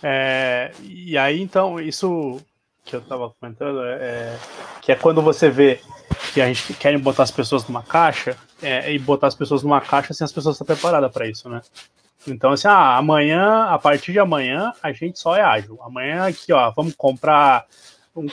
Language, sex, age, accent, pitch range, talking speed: Portuguese, male, 20-39, Brazilian, 135-180 Hz, 200 wpm